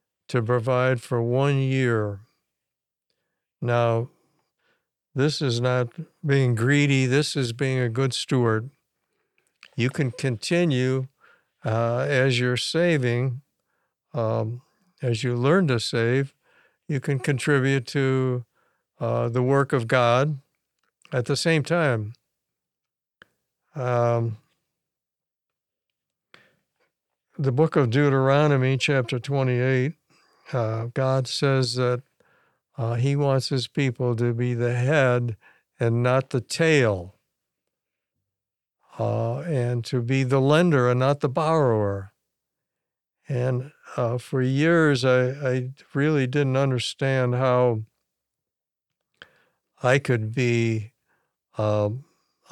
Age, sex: 60-79, male